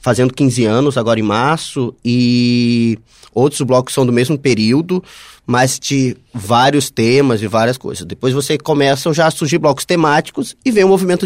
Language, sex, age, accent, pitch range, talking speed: Portuguese, male, 20-39, Brazilian, 130-170 Hz, 175 wpm